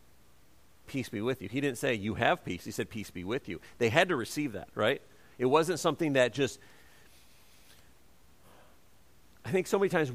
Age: 50-69